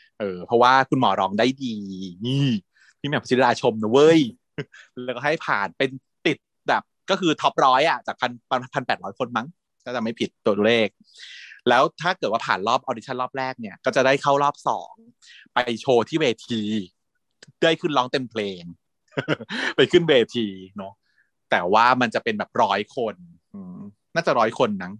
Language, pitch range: Thai, 110-155 Hz